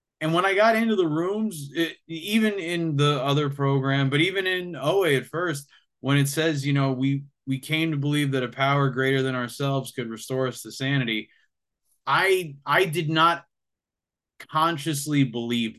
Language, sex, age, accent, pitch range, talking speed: English, male, 20-39, American, 120-150 Hz, 175 wpm